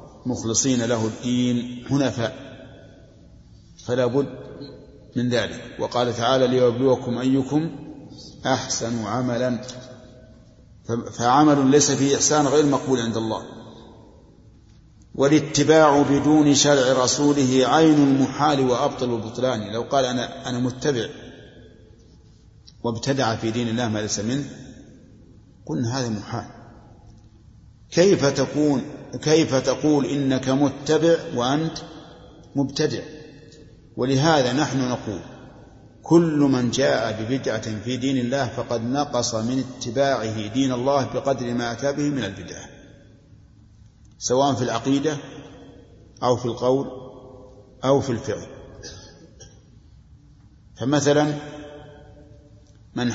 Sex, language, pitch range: male, Arabic, 115-140 Hz